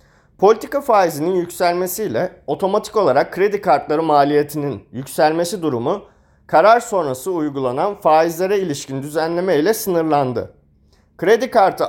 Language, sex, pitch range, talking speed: Turkish, male, 145-195 Hz, 100 wpm